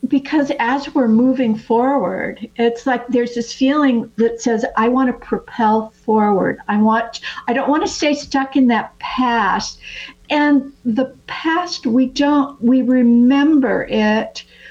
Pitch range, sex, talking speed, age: 210-260 Hz, female, 145 wpm, 60-79